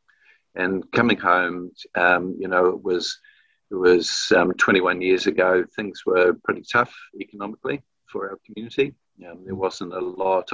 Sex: male